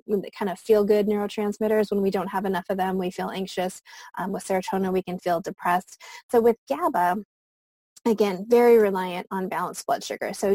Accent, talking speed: American, 190 wpm